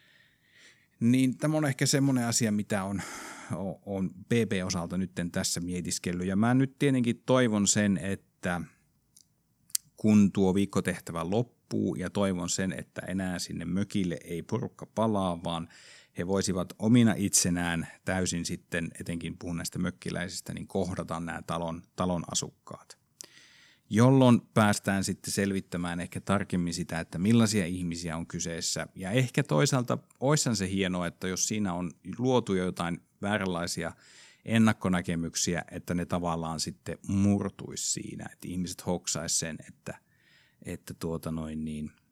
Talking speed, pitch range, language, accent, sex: 130 wpm, 85-105 Hz, Finnish, native, male